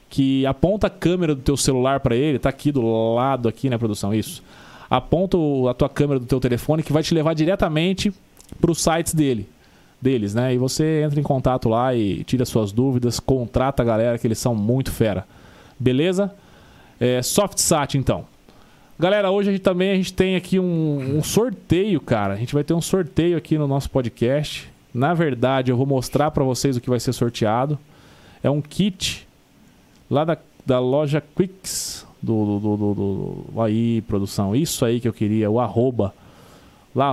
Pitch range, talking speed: 120-165 Hz, 185 wpm